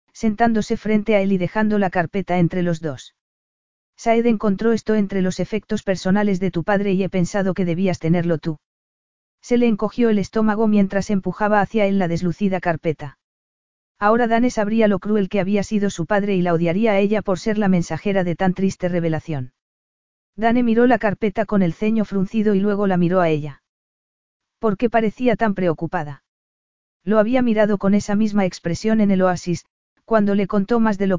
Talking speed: 190 wpm